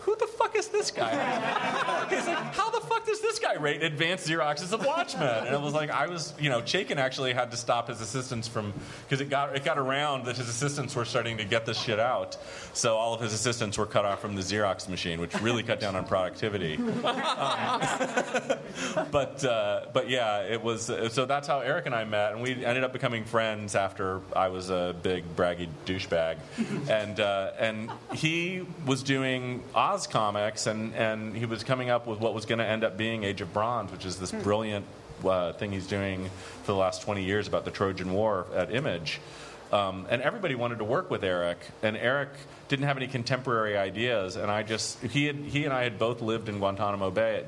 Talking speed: 215 wpm